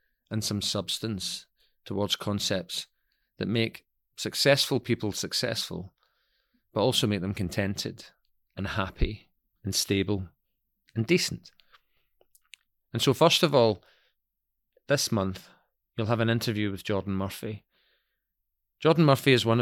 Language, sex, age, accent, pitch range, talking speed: English, male, 40-59, British, 95-115 Hz, 120 wpm